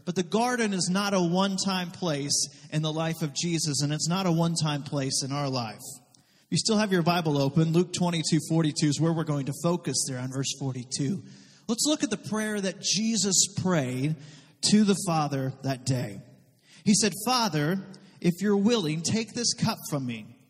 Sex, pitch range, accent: male, 145-195 Hz, American